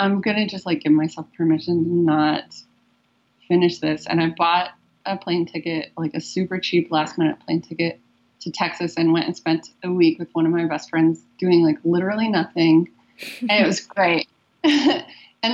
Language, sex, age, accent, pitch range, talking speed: English, female, 20-39, American, 160-195 Hz, 190 wpm